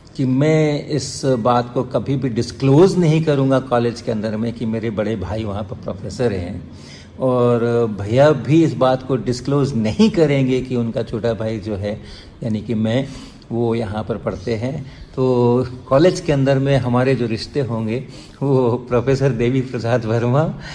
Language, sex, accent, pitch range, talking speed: Hindi, male, native, 115-150 Hz, 170 wpm